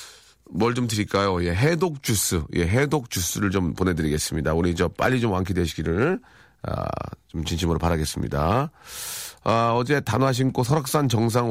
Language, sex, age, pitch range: Korean, male, 40-59, 95-145 Hz